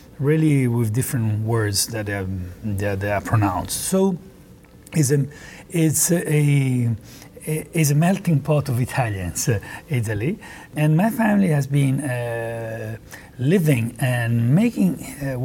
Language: English